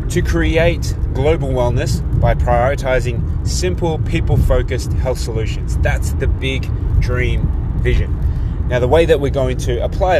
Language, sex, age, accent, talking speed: English, male, 20-39, Australian, 135 wpm